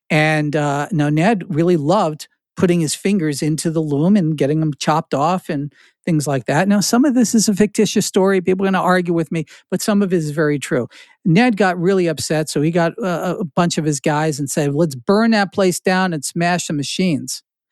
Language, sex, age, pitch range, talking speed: English, male, 50-69, 160-210 Hz, 225 wpm